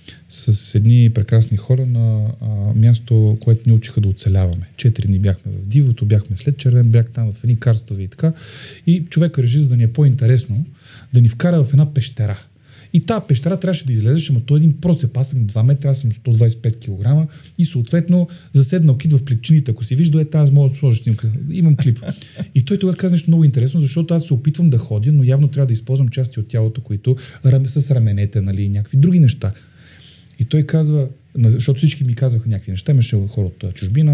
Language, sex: Bulgarian, male